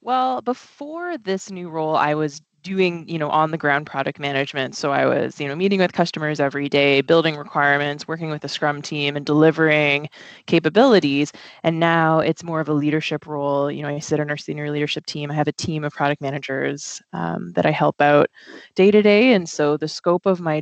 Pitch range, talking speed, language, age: 145-165 Hz, 210 wpm, English, 20-39